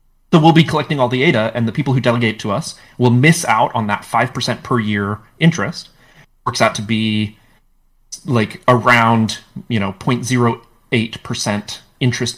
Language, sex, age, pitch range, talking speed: English, male, 30-49, 110-135 Hz, 160 wpm